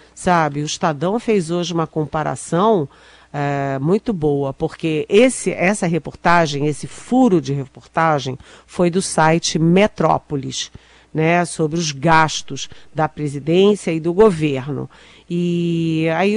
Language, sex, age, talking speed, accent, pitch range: Portuguese, female, 50-69, 120 wpm, Brazilian, 160-215 Hz